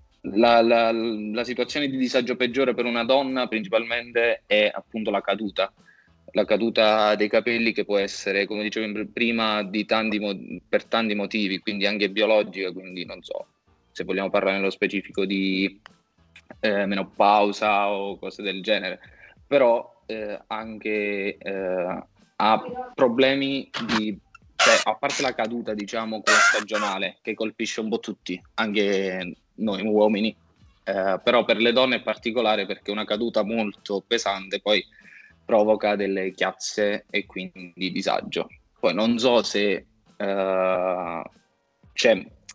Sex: male